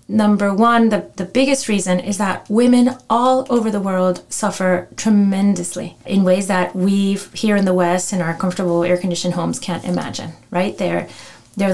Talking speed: 170 wpm